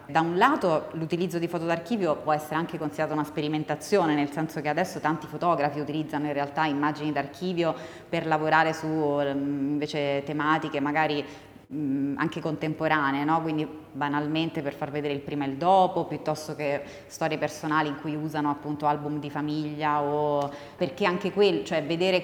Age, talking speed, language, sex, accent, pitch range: 20-39, 160 wpm, Italian, female, native, 145-160 Hz